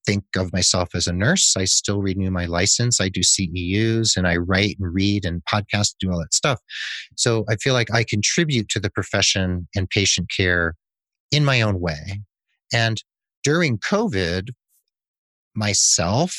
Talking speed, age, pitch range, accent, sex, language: 165 wpm, 30-49, 95-120 Hz, American, male, English